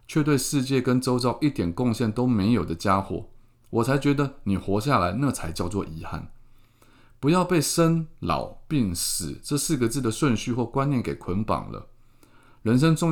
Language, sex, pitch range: Chinese, male, 90-120 Hz